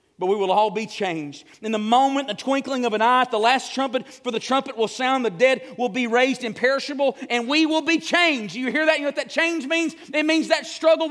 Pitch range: 255-325 Hz